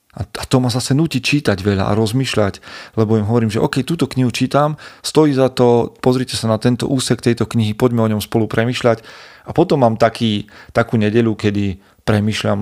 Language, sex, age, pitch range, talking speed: Slovak, male, 40-59, 100-120 Hz, 195 wpm